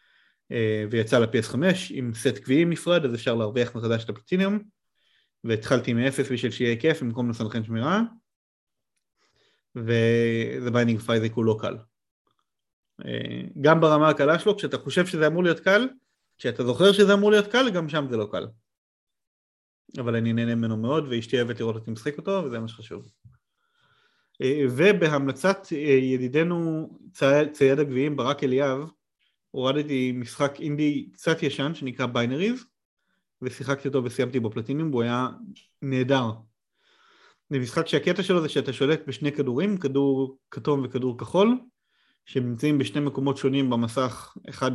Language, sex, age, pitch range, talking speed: Hebrew, male, 30-49, 120-165 Hz, 145 wpm